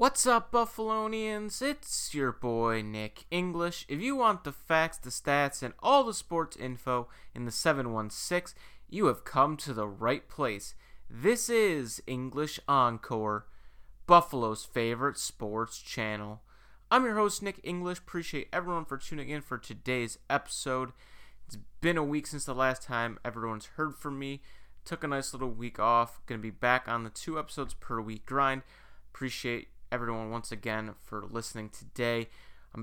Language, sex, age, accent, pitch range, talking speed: English, male, 30-49, American, 115-145 Hz, 160 wpm